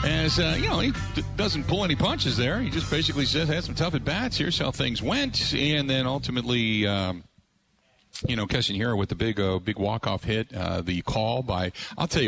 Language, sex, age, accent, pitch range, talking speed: English, male, 50-69, American, 95-120 Hz, 220 wpm